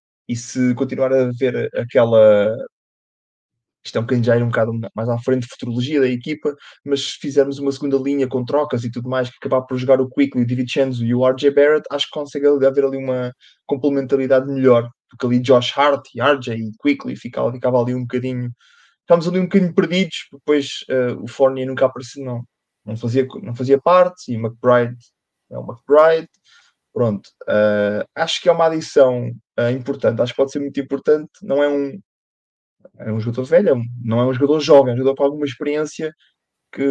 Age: 20-39